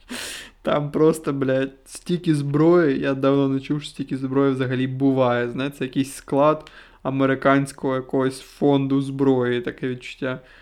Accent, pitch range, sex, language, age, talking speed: native, 130-145 Hz, male, Ukrainian, 20-39, 135 wpm